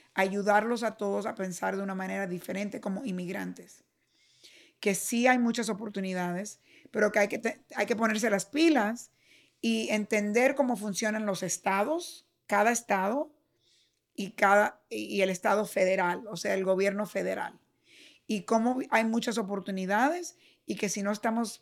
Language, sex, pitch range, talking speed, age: English, female, 190-225 Hz, 155 wpm, 50-69